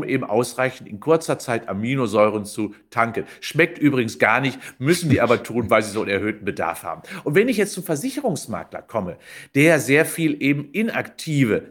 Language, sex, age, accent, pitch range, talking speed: German, male, 50-69, German, 115-165 Hz, 180 wpm